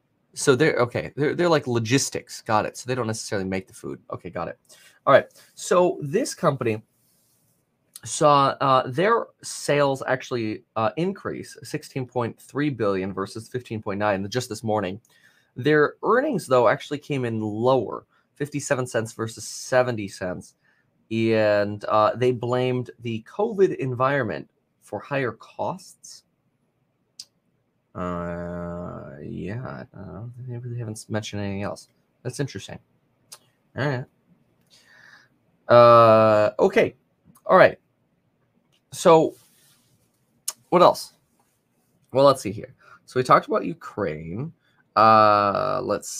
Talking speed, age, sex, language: 120 wpm, 20-39, male, English